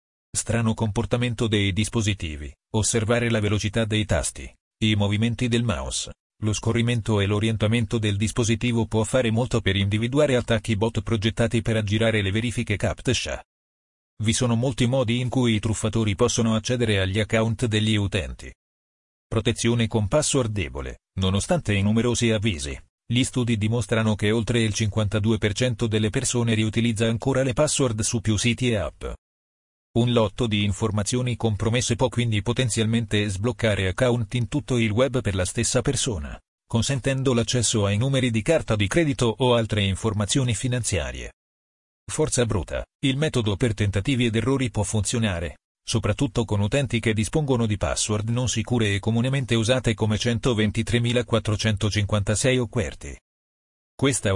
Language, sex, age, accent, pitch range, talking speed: Italian, male, 40-59, native, 105-120 Hz, 140 wpm